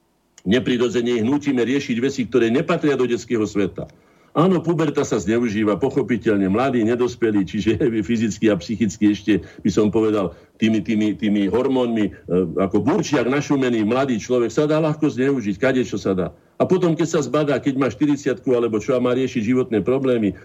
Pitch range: 105-145 Hz